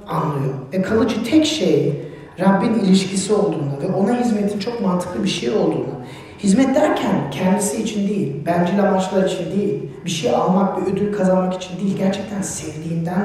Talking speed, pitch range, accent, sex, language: 160 wpm, 145-215 Hz, native, male, Turkish